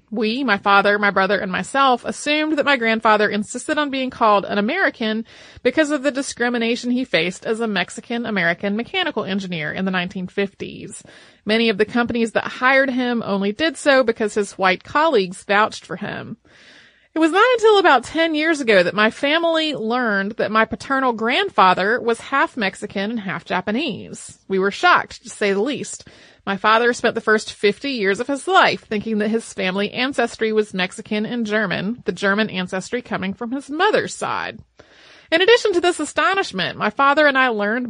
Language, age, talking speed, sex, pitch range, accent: English, 30-49, 180 wpm, female, 200-255 Hz, American